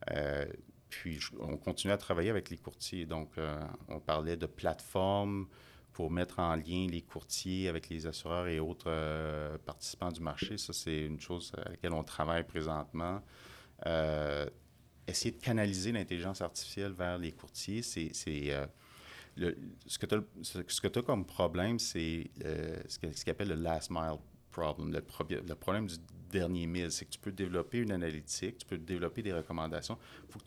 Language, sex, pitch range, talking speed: French, male, 80-100 Hz, 180 wpm